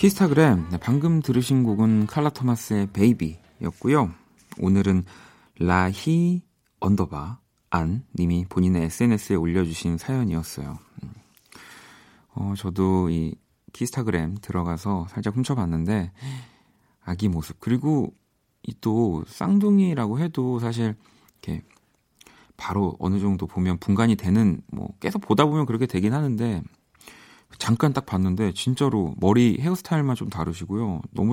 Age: 40-59